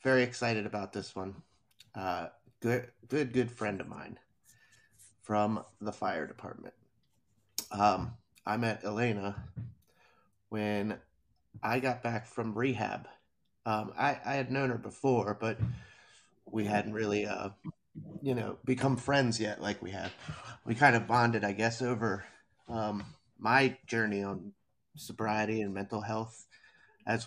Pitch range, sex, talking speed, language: 100-120 Hz, male, 135 wpm, English